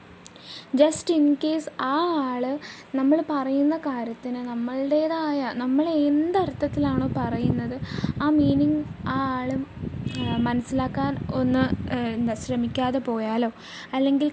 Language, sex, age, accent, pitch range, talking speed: Malayalam, female, 20-39, native, 245-290 Hz, 90 wpm